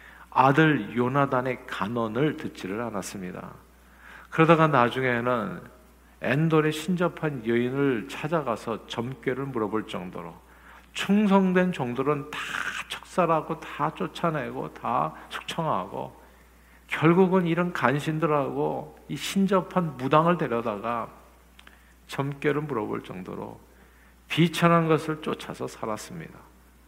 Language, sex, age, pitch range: Korean, male, 50-69, 100-150 Hz